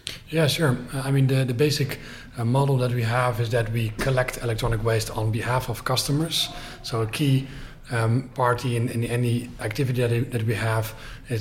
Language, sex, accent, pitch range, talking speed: English, male, Dutch, 115-130 Hz, 190 wpm